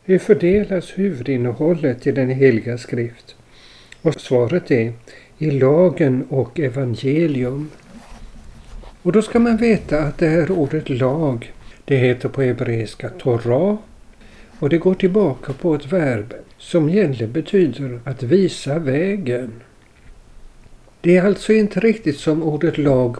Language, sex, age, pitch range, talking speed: Swedish, male, 60-79, 120-165 Hz, 130 wpm